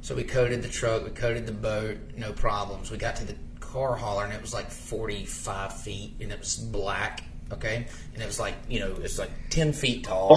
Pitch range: 105-130 Hz